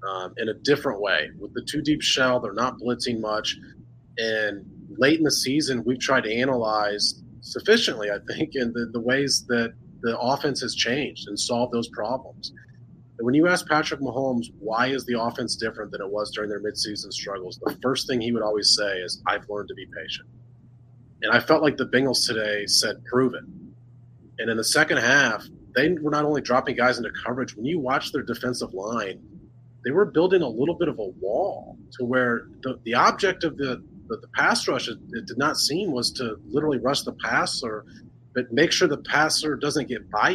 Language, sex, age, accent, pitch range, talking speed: English, male, 30-49, American, 120-145 Hz, 205 wpm